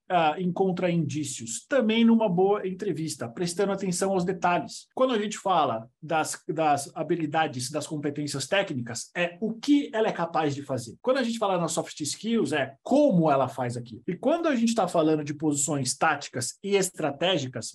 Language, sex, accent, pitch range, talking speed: Portuguese, male, Brazilian, 155-210 Hz, 175 wpm